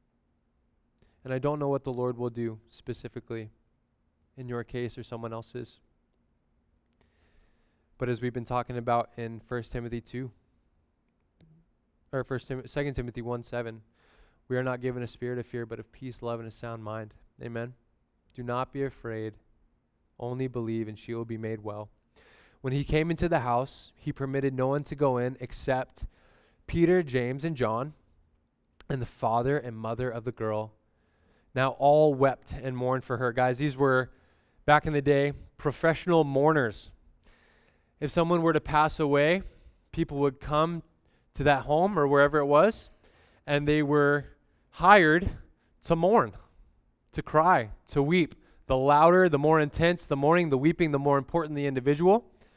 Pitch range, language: 115-150 Hz, English